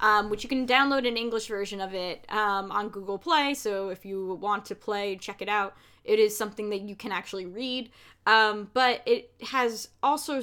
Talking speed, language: 205 wpm, English